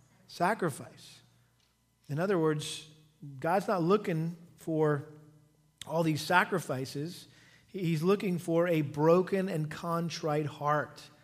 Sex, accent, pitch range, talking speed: male, American, 150-180 Hz, 100 wpm